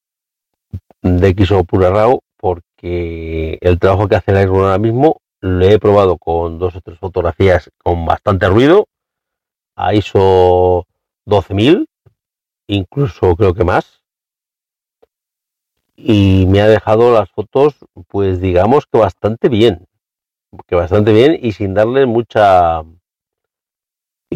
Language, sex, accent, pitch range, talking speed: Spanish, male, Spanish, 95-115 Hz, 120 wpm